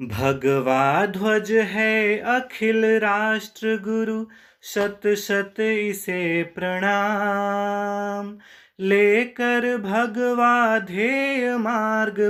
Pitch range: 200-245 Hz